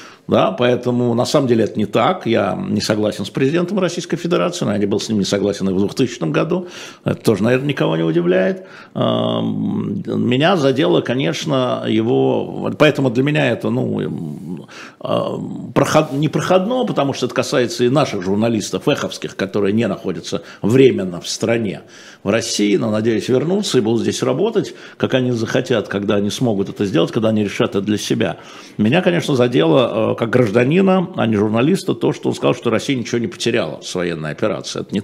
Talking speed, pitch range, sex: 180 wpm, 105-145 Hz, male